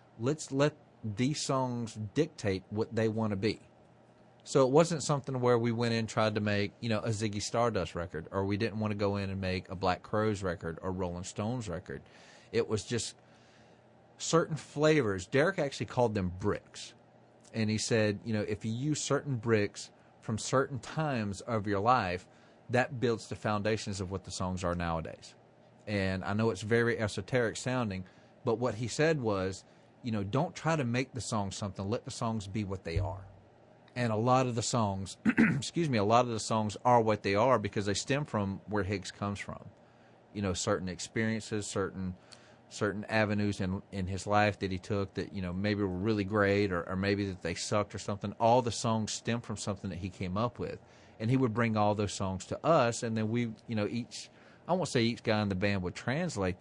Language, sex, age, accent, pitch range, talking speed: English, male, 40-59, American, 100-120 Hz, 210 wpm